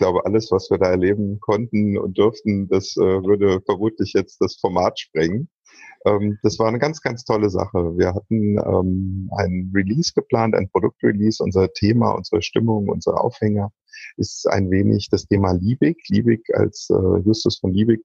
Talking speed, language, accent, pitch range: 175 wpm, German, German, 100-120 Hz